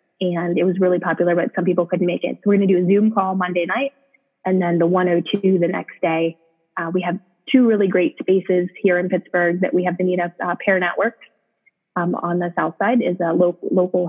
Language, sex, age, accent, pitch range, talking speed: English, female, 20-39, American, 175-205 Hz, 240 wpm